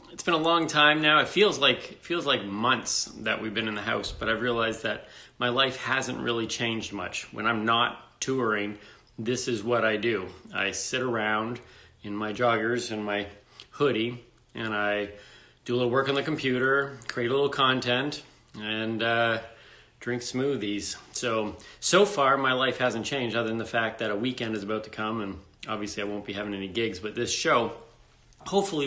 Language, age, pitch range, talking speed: English, 30-49, 105-125 Hz, 195 wpm